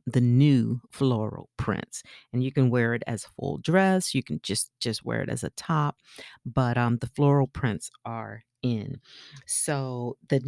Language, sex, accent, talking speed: English, female, American, 180 wpm